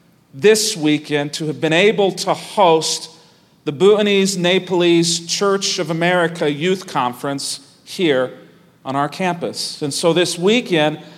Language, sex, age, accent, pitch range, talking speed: English, male, 40-59, American, 150-185 Hz, 130 wpm